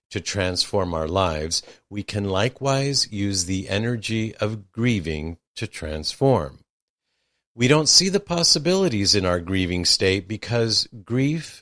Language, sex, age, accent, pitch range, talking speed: English, male, 50-69, American, 90-120 Hz, 130 wpm